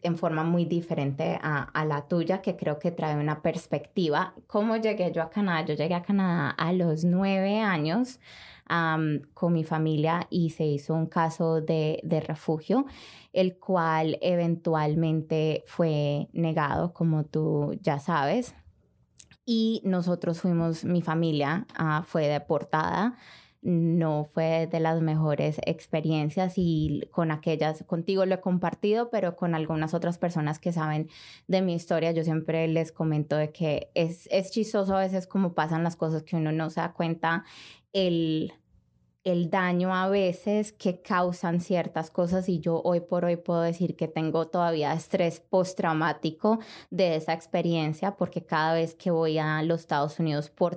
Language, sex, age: Spanish, female, 20-39